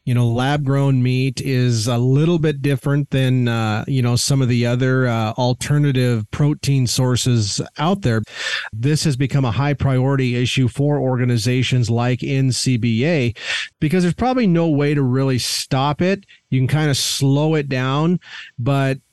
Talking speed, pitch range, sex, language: 155 wpm, 120-145 Hz, male, English